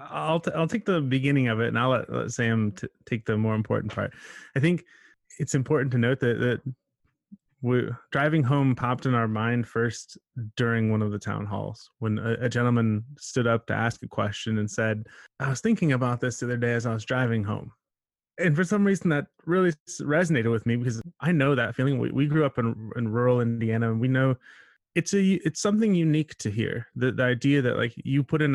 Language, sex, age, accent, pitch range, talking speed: English, male, 20-39, American, 115-140 Hz, 220 wpm